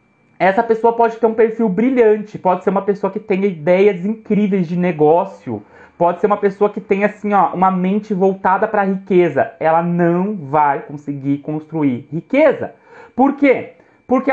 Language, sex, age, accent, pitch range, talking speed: Portuguese, male, 30-49, Brazilian, 180-230 Hz, 170 wpm